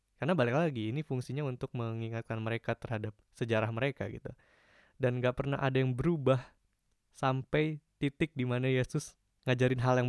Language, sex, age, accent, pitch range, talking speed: Indonesian, male, 20-39, native, 110-135 Hz, 150 wpm